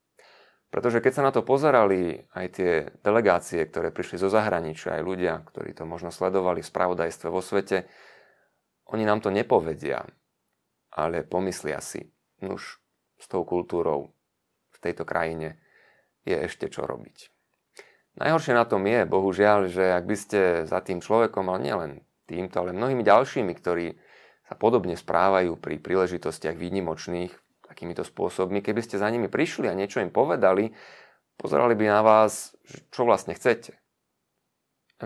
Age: 30-49